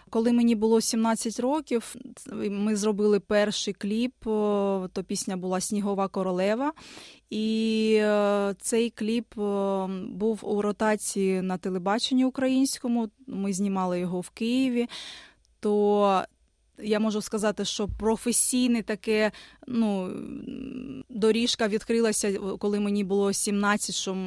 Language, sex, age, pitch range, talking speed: Ukrainian, female, 20-39, 195-230 Hz, 105 wpm